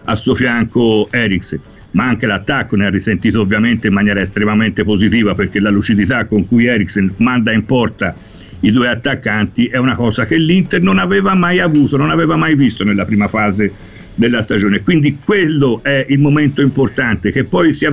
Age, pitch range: 60-79, 105-145 Hz